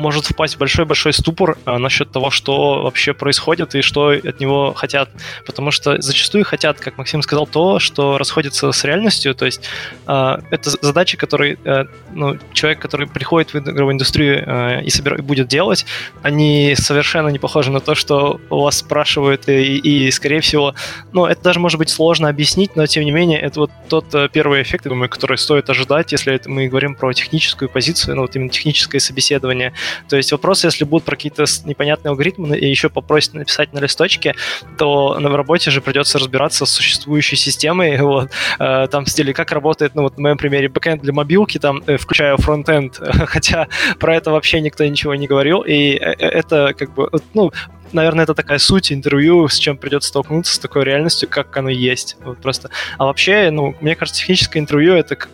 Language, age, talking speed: Russian, 20-39, 190 wpm